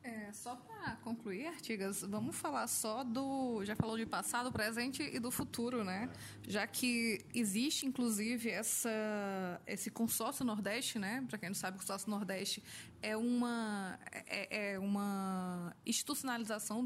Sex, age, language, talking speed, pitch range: female, 20-39, Portuguese, 140 wpm, 205-250 Hz